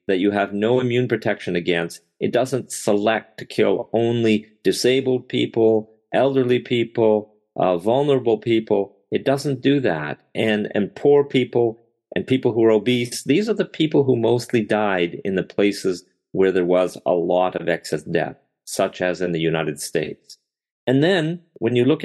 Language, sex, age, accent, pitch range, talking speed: English, male, 50-69, American, 105-130 Hz, 170 wpm